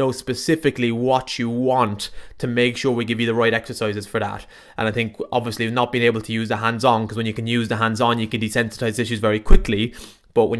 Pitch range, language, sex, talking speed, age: 110-130 Hz, English, male, 240 wpm, 20-39